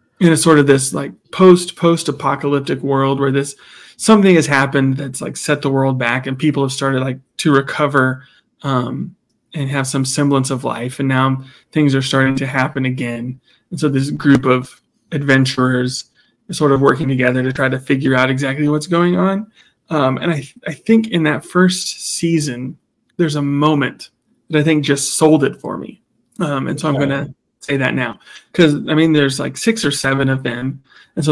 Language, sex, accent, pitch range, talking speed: English, male, American, 135-160 Hz, 200 wpm